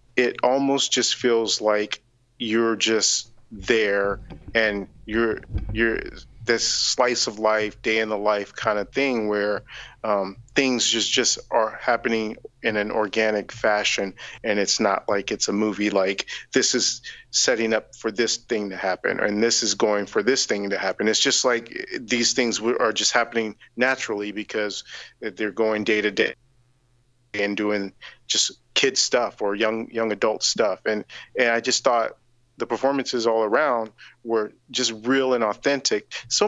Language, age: English, 40-59